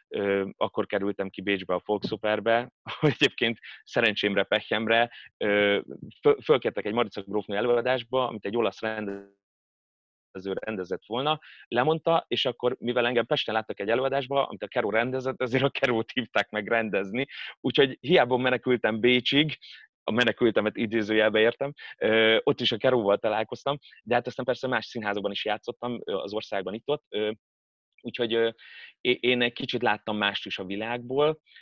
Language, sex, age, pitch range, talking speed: Hungarian, male, 30-49, 105-125 Hz, 140 wpm